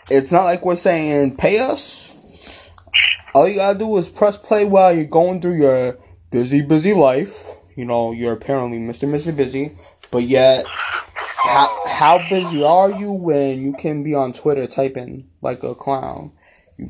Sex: male